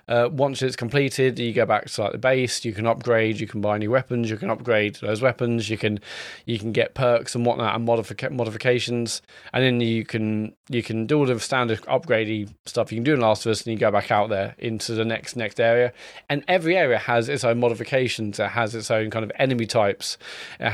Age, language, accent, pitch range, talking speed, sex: 20-39, English, British, 110-125 Hz, 235 wpm, male